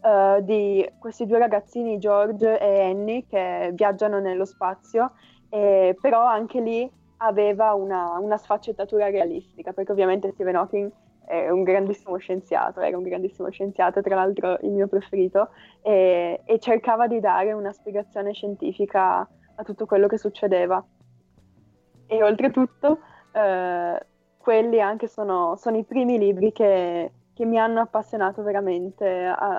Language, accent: Italian, native